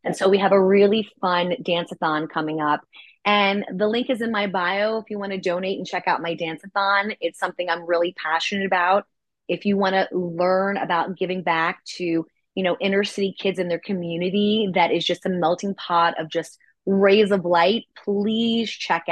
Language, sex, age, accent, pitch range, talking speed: English, female, 20-39, American, 170-215 Hz, 195 wpm